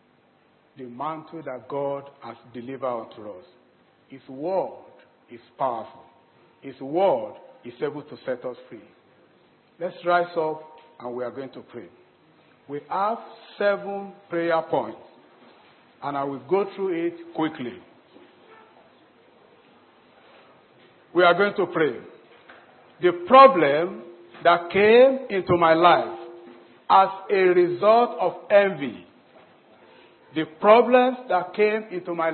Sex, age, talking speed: male, 50-69, 120 wpm